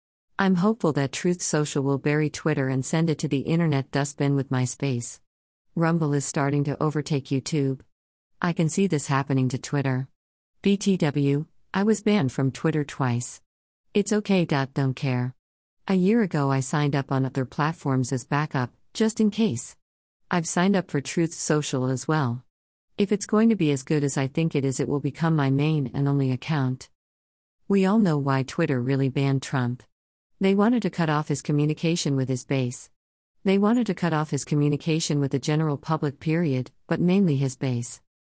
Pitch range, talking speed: 130-160 Hz, 185 wpm